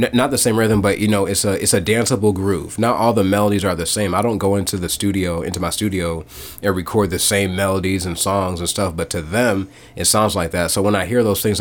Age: 30-49